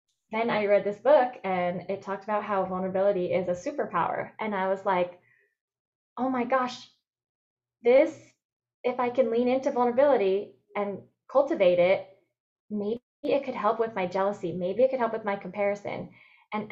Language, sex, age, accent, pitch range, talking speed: English, female, 10-29, American, 190-240 Hz, 165 wpm